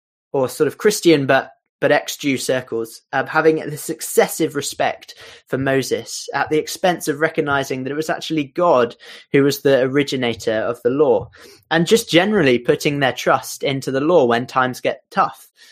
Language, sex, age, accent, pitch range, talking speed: English, male, 20-39, British, 120-160 Hz, 170 wpm